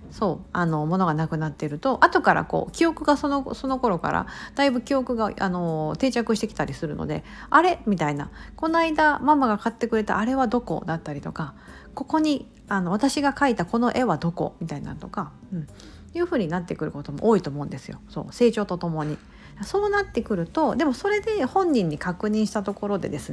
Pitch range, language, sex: 165-265 Hz, Japanese, female